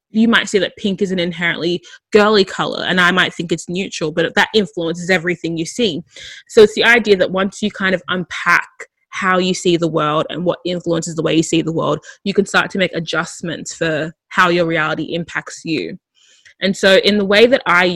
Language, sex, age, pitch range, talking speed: English, female, 20-39, 170-210 Hz, 215 wpm